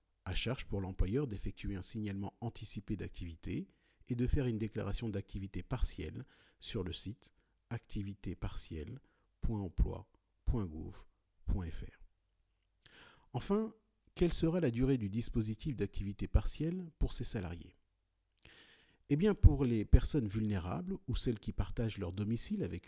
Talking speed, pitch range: 120 wpm, 90-120 Hz